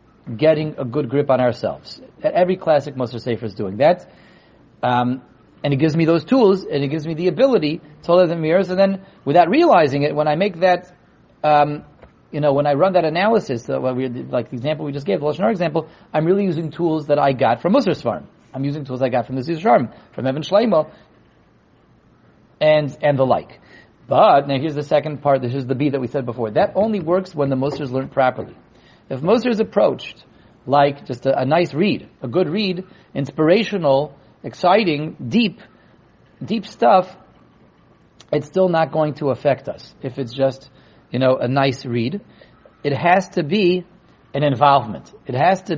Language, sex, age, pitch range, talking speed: English, male, 40-59, 135-185 Hz, 195 wpm